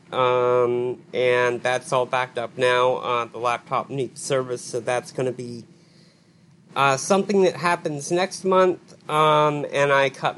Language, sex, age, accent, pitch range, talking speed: English, male, 40-59, American, 130-170 Hz, 160 wpm